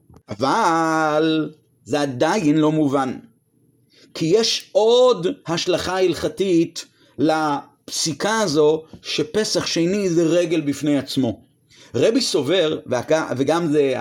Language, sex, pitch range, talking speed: Hebrew, male, 160-215 Hz, 95 wpm